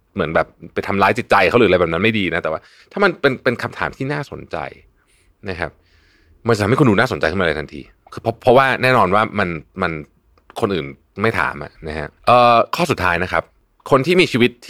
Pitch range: 85-125 Hz